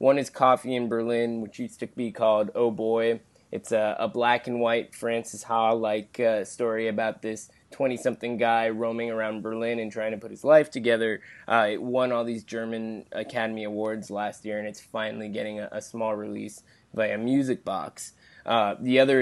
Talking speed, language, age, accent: 180 wpm, English, 20-39, American